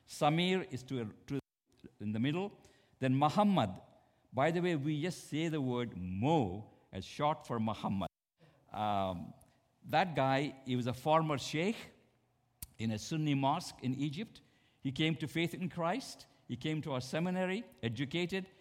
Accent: Indian